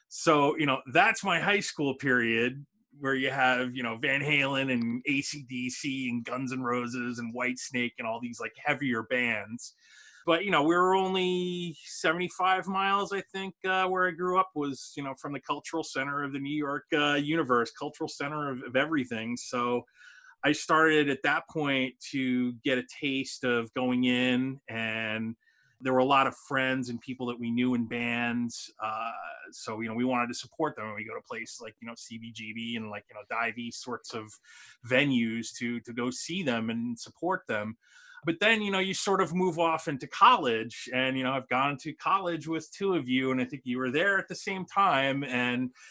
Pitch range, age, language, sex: 120-165 Hz, 30-49, English, male